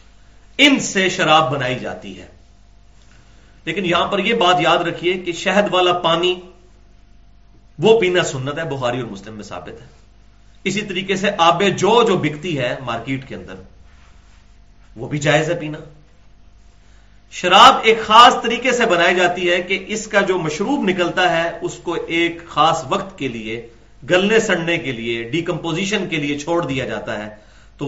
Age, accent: 40-59, Indian